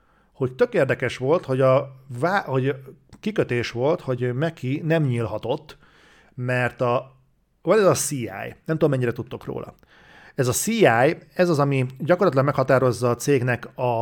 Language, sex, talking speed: Hungarian, male, 145 wpm